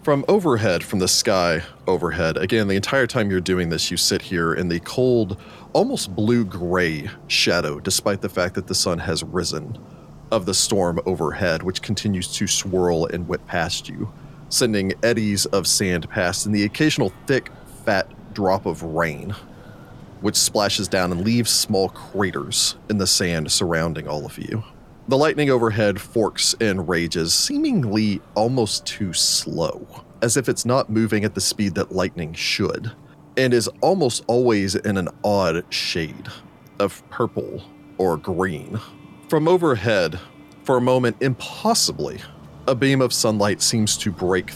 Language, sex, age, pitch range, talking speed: English, male, 30-49, 90-125 Hz, 155 wpm